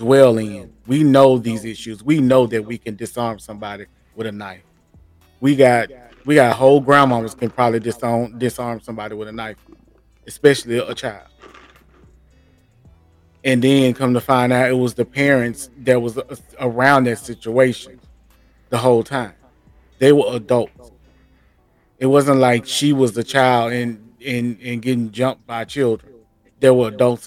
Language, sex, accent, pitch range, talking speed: English, male, American, 110-130 Hz, 155 wpm